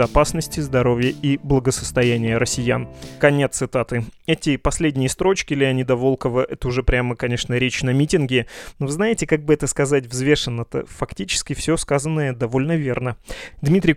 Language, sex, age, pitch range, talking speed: Russian, male, 20-39, 125-145 Hz, 145 wpm